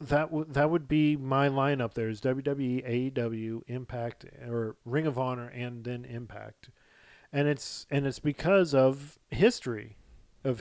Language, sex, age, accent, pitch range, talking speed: English, male, 40-59, American, 125-150 Hz, 145 wpm